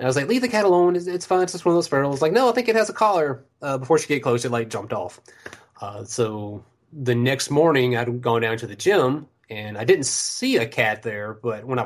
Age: 30-49